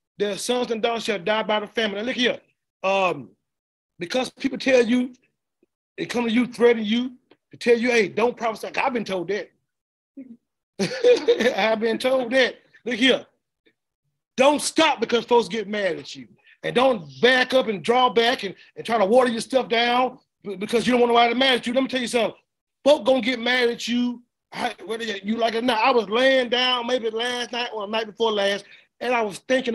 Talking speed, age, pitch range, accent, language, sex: 215 wpm, 30-49, 210-250 Hz, American, English, male